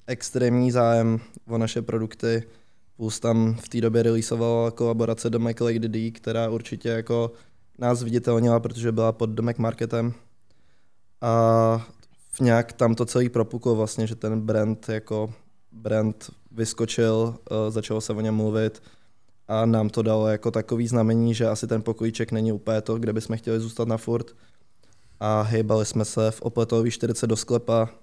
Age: 20-39